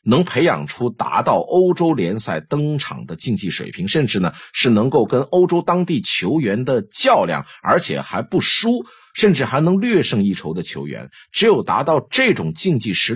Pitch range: 120-185 Hz